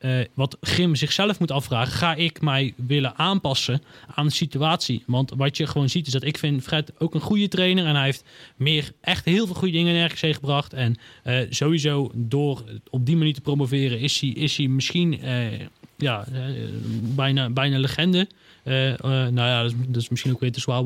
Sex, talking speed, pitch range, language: male, 210 wpm, 130-165 Hz, Dutch